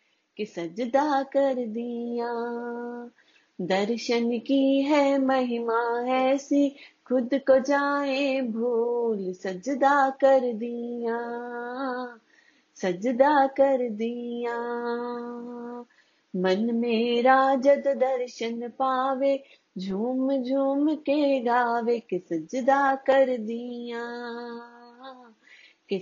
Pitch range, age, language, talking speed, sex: 235-275 Hz, 30-49, Hindi, 75 wpm, female